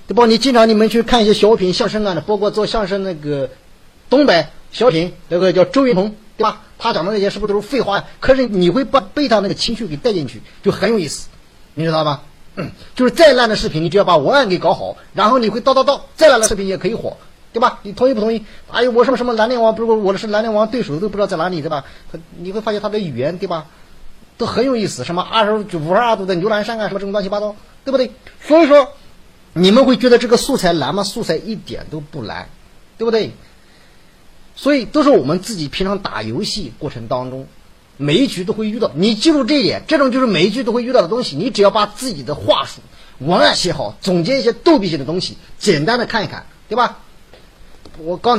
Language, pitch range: Chinese, 185-240 Hz